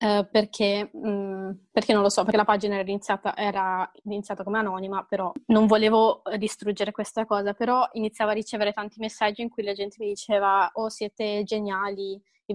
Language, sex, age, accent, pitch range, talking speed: Italian, female, 20-39, native, 195-215 Hz, 165 wpm